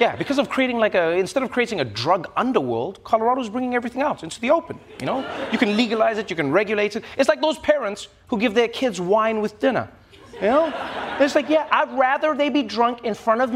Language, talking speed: English, 235 wpm